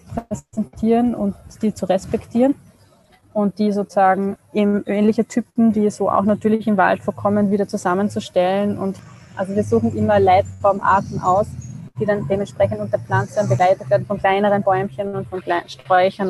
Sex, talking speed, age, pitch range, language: female, 145 wpm, 20-39, 185-205 Hz, German